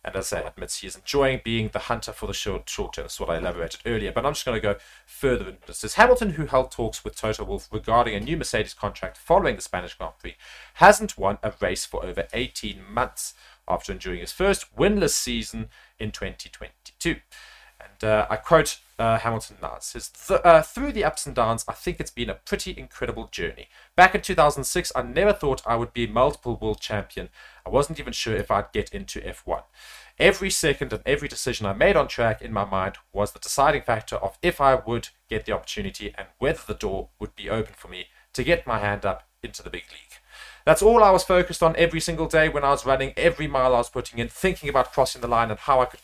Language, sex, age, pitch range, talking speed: English, male, 30-49, 115-165 Hz, 230 wpm